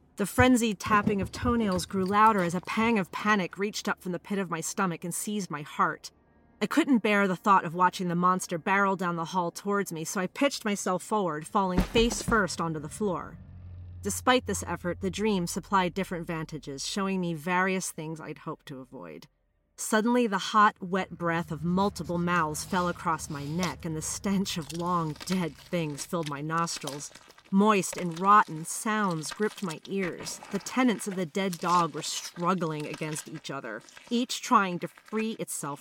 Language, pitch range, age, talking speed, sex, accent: English, 160-195 Hz, 40-59, 185 wpm, female, American